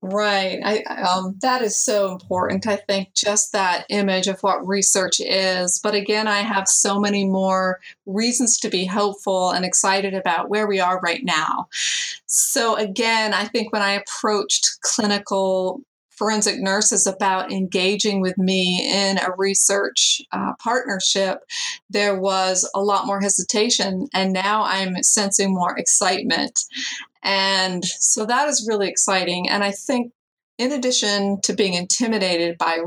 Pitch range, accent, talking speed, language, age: 185-210 Hz, American, 150 wpm, English, 30-49